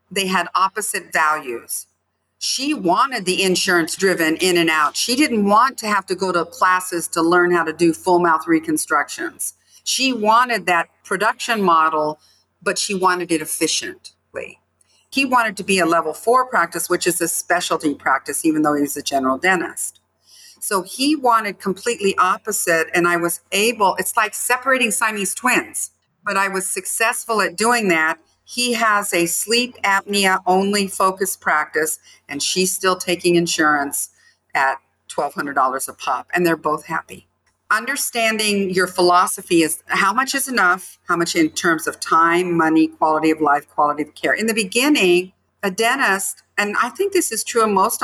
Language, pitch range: English, 165-225 Hz